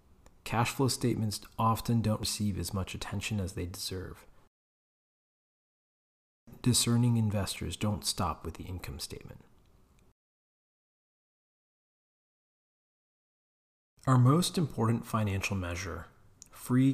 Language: English